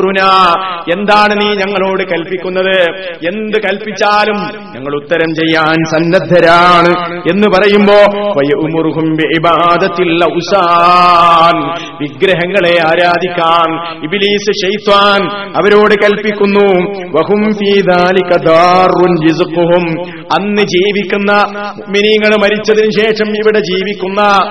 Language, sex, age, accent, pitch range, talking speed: Malayalam, male, 30-49, native, 165-205 Hz, 50 wpm